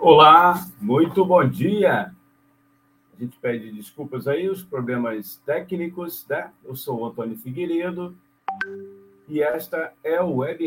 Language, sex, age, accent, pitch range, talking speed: Portuguese, male, 50-69, Brazilian, 115-165 Hz, 130 wpm